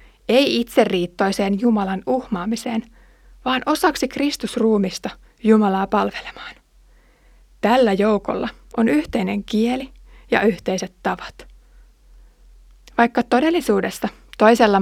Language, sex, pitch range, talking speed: Finnish, female, 190-240 Hz, 80 wpm